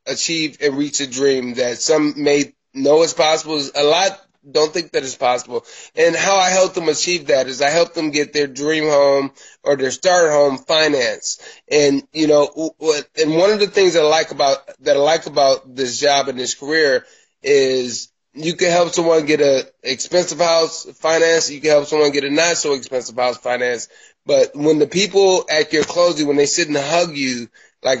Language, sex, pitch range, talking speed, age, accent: English, male, 140-165 Hz, 200 wpm, 20-39, American